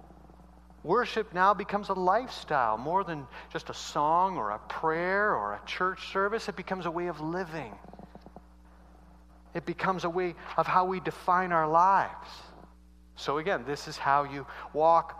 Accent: American